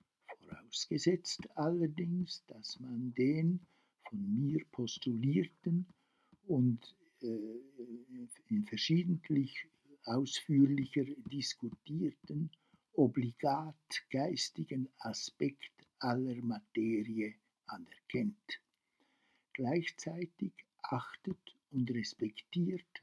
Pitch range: 125-175 Hz